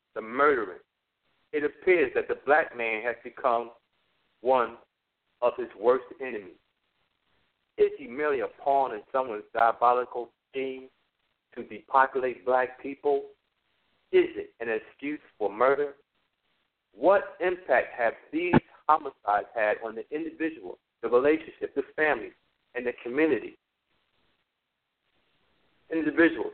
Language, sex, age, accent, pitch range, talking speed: English, male, 60-79, American, 135-175 Hz, 115 wpm